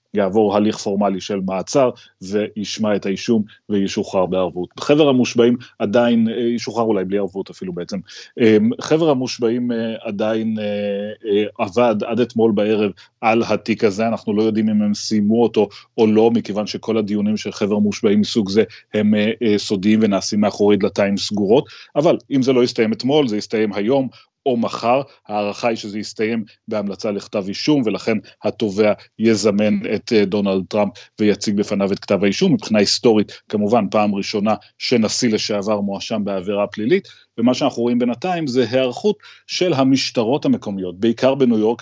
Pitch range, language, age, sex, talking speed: 105-120 Hz, Hebrew, 30-49, male, 150 wpm